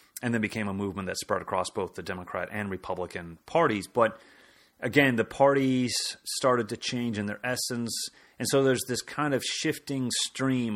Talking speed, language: 180 wpm, English